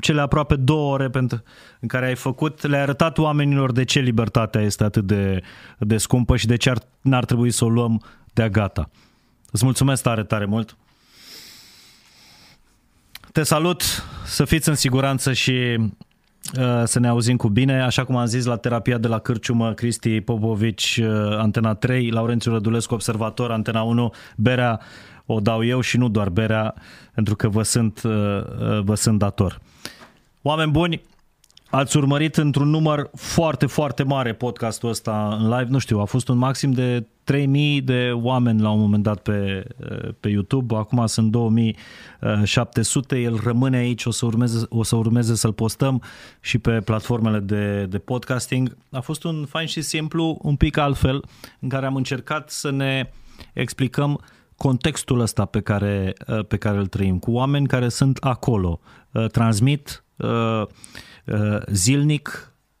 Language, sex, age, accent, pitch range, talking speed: Romanian, male, 20-39, native, 110-135 Hz, 150 wpm